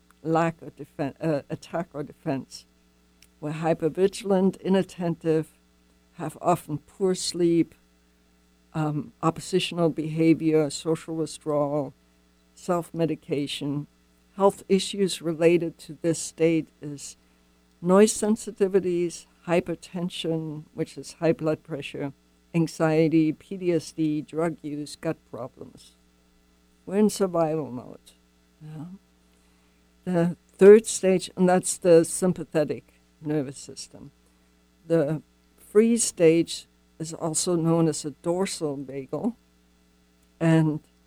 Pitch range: 130-170 Hz